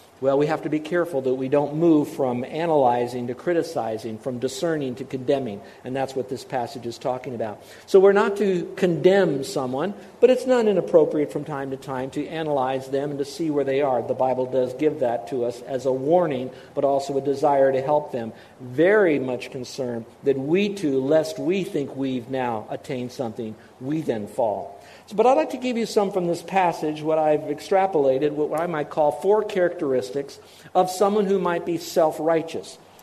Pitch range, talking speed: 135-180 Hz, 195 wpm